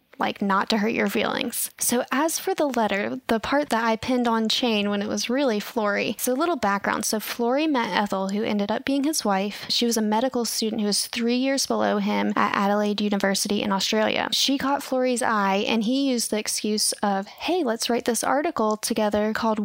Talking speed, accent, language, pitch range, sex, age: 215 wpm, American, English, 210-255 Hz, female, 10-29